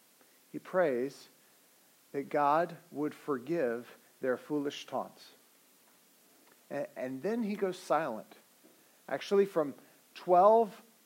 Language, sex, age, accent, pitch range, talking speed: English, male, 50-69, American, 155-210 Hz, 100 wpm